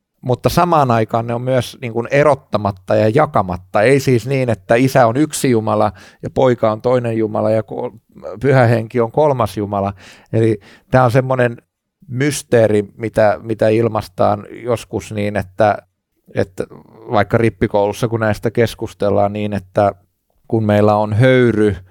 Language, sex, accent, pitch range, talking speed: Finnish, male, native, 105-125 Hz, 140 wpm